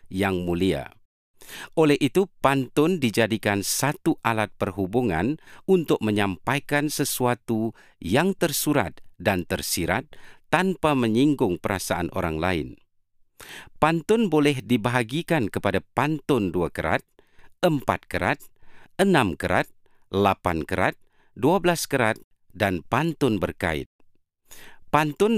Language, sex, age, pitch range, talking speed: Malay, male, 50-69, 95-145 Hz, 95 wpm